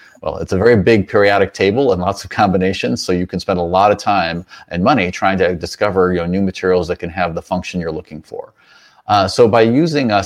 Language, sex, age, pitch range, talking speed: English, male, 30-49, 85-95 Hz, 230 wpm